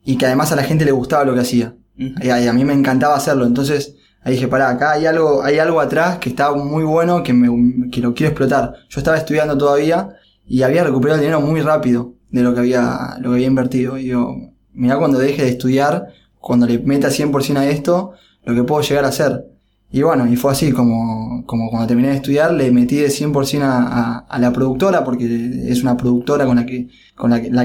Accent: Argentinian